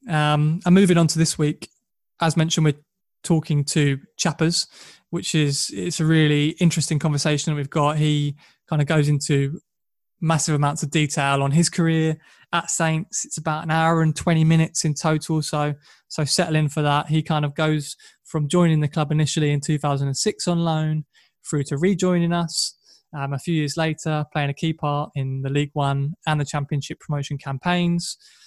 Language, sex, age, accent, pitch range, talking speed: English, male, 20-39, British, 145-170 Hz, 180 wpm